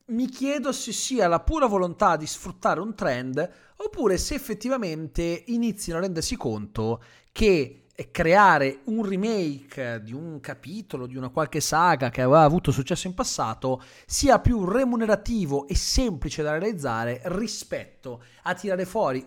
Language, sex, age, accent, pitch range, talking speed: Italian, male, 40-59, native, 135-215 Hz, 145 wpm